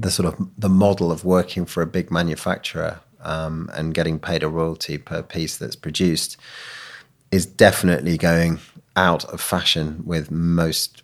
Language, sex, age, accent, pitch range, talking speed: English, male, 30-49, British, 80-100 Hz, 160 wpm